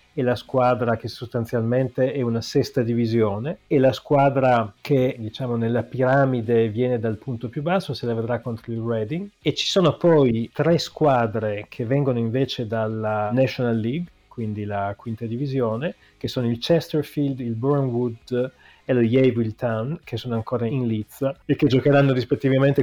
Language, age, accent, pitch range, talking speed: Italian, 30-49, native, 120-145 Hz, 160 wpm